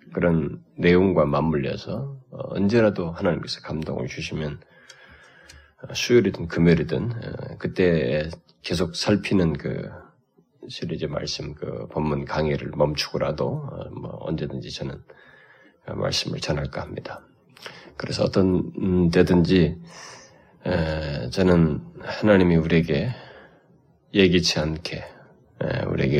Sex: male